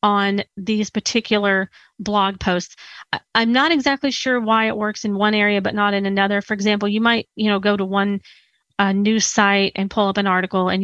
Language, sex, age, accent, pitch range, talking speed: English, female, 30-49, American, 195-225 Hz, 205 wpm